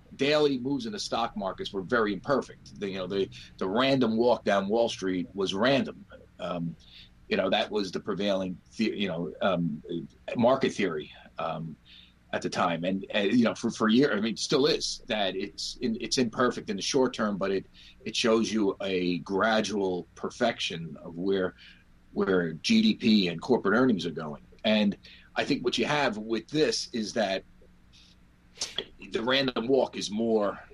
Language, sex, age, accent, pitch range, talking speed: English, male, 40-59, American, 85-115 Hz, 180 wpm